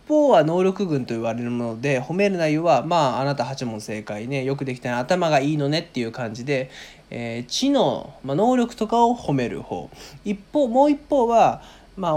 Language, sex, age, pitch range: Japanese, male, 20-39, 130-205 Hz